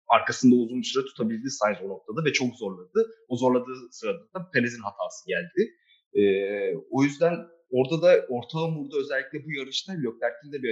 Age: 30-49